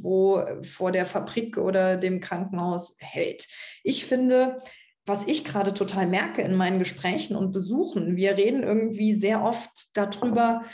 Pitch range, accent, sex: 190-225 Hz, German, female